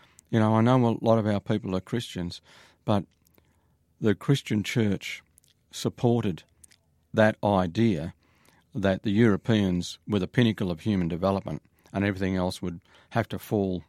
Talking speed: 145 wpm